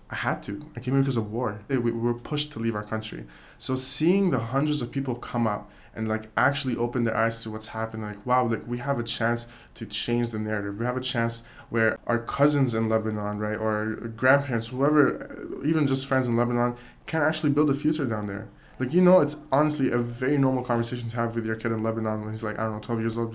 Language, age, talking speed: English, 20-39, 245 wpm